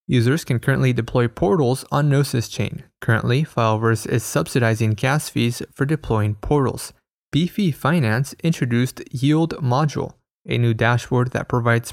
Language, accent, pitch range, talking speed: English, American, 115-135 Hz, 135 wpm